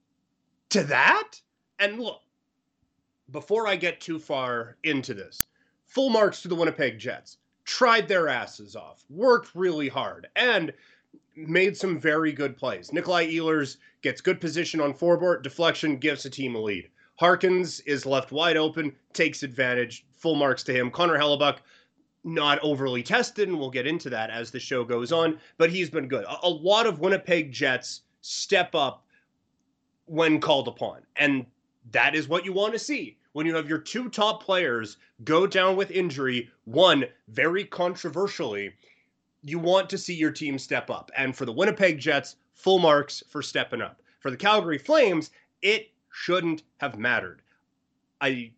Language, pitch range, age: English, 135-180 Hz, 30-49